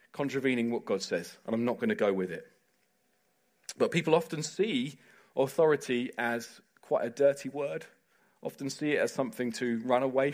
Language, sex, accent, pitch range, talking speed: English, male, British, 130-175 Hz, 175 wpm